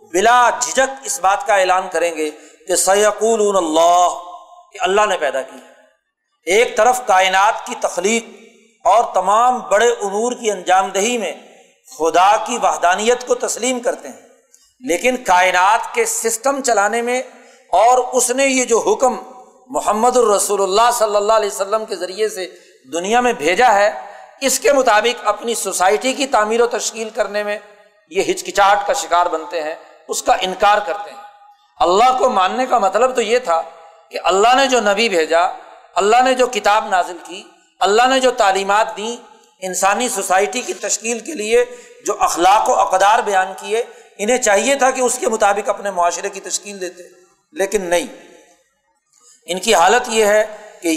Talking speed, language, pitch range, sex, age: 165 wpm, Urdu, 195-255 Hz, male, 50-69